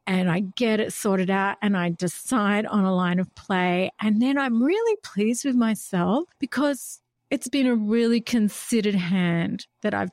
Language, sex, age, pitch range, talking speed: English, female, 50-69, 190-255 Hz, 180 wpm